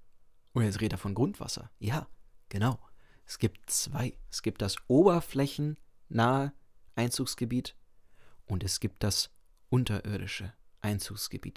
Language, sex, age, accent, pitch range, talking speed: German, male, 30-49, German, 100-145 Hz, 115 wpm